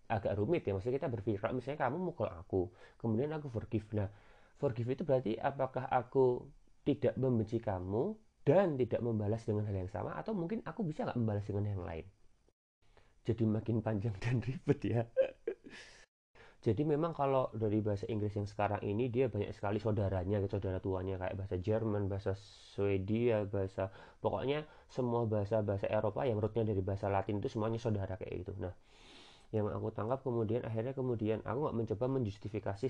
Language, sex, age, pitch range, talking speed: Indonesian, male, 30-49, 100-120 Hz, 165 wpm